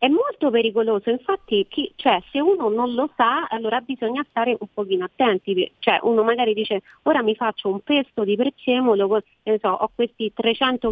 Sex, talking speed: female, 185 wpm